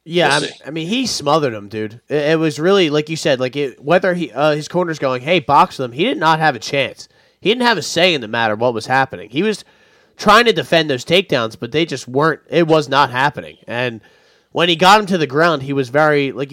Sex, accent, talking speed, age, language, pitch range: male, American, 255 wpm, 20-39, English, 135-170 Hz